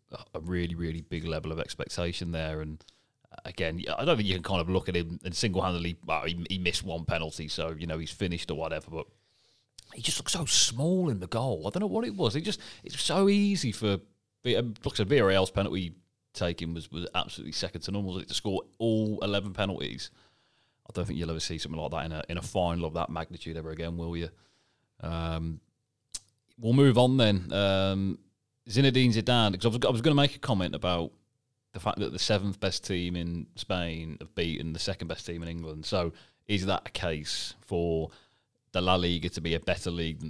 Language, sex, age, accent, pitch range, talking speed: English, male, 30-49, British, 85-110 Hz, 215 wpm